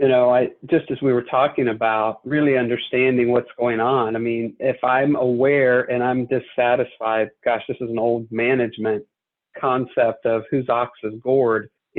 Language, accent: English, American